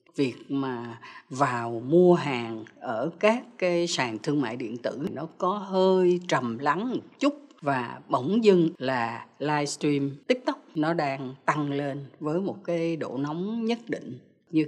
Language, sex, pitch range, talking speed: Vietnamese, female, 140-195 Hz, 155 wpm